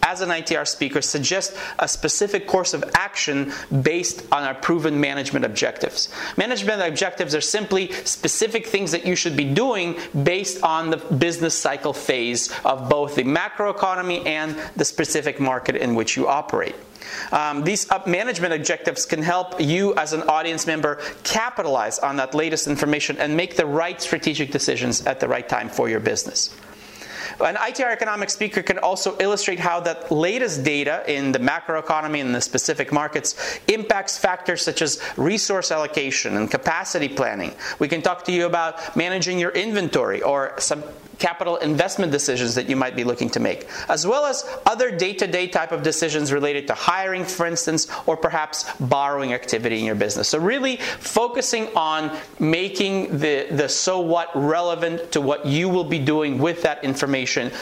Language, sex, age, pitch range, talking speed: English, male, 30-49, 145-185 Hz, 170 wpm